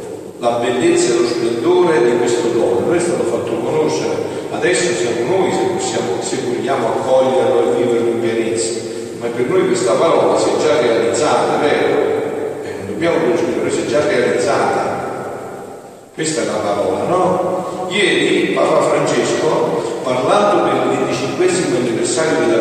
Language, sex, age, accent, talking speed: Italian, male, 40-59, native, 145 wpm